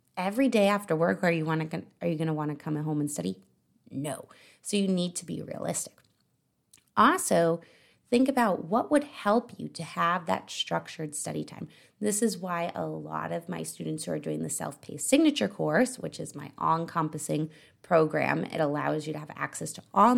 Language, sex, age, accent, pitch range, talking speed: English, female, 30-49, American, 160-230 Hz, 195 wpm